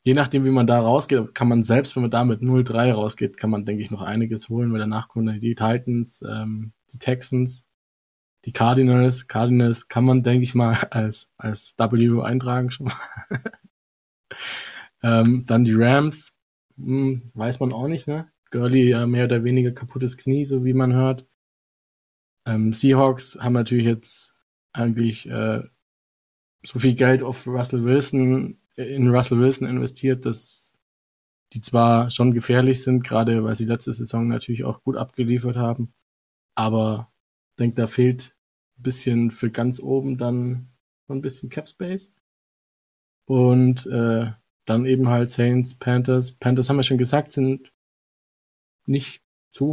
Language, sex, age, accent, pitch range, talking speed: German, male, 20-39, German, 115-130 Hz, 155 wpm